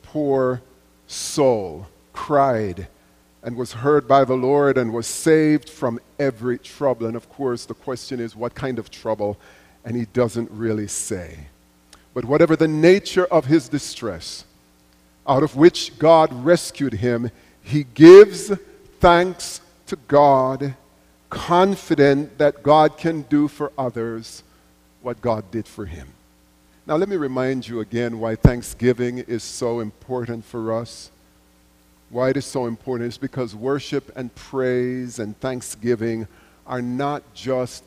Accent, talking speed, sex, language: American, 140 wpm, male, English